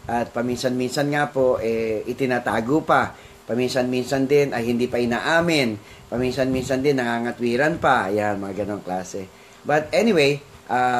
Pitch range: 120-140 Hz